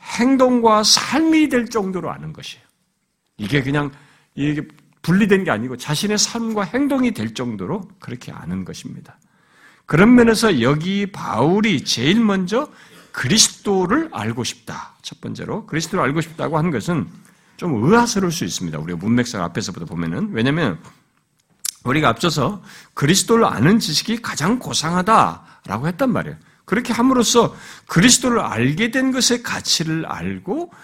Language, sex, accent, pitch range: Korean, male, native, 160-250 Hz